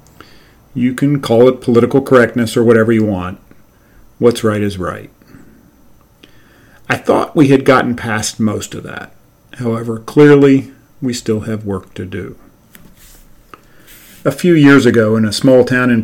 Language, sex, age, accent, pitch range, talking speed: English, male, 40-59, American, 105-135 Hz, 150 wpm